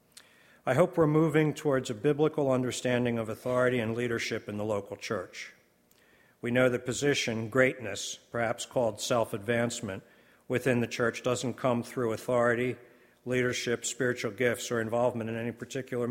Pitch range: 100-125 Hz